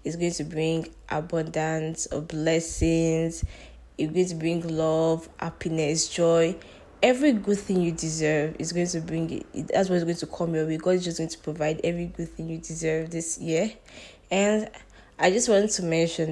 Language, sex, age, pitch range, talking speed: English, female, 10-29, 160-175 Hz, 180 wpm